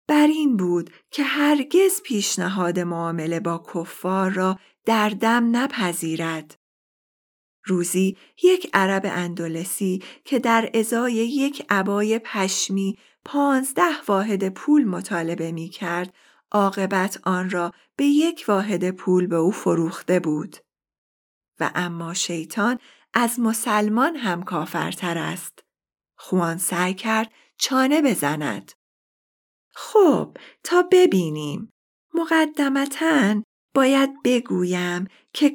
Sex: female